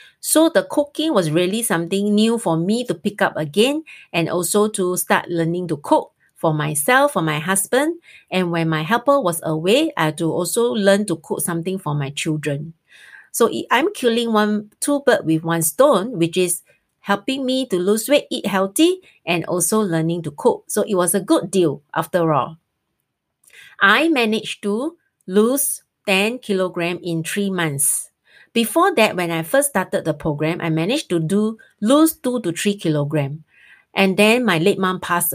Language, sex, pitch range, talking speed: English, female, 165-220 Hz, 180 wpm